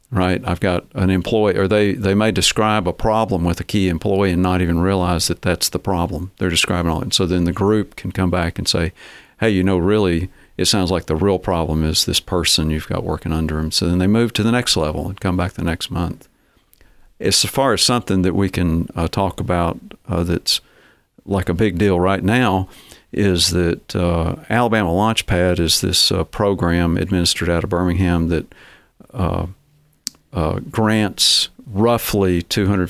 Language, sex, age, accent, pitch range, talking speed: English, male, 50-69, American, 85-100 Hz, 200 wpm